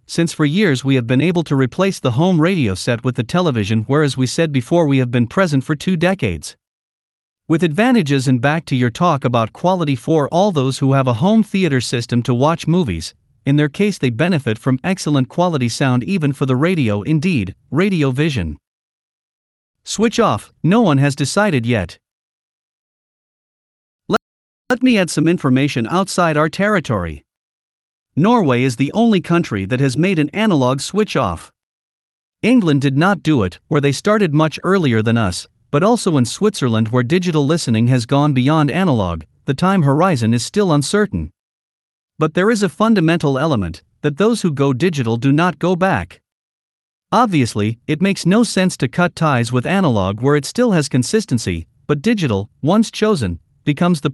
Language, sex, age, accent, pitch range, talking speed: English, male, 50-69, American, 125-180 Hz, 175 wpm